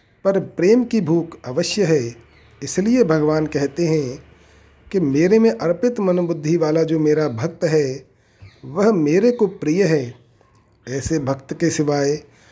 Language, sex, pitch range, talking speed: Hindi, male, 135-180 Hz, 140 wpm